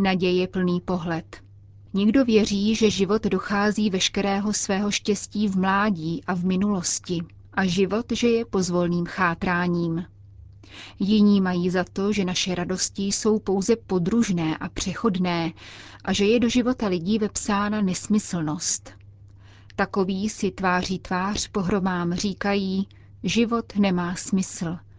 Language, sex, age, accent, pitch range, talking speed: Czech, female, 30-49, native, 170-210 Hz, 120 wpm